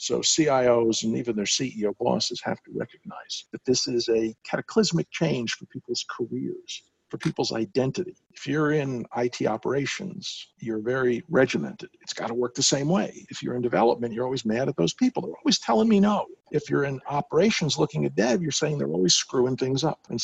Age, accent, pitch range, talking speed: 50-69, American, 120-190 Hz, 195 wpm